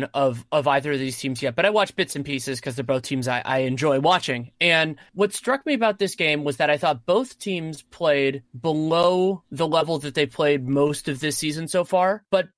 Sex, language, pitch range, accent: male, English, 145-180 Hz, American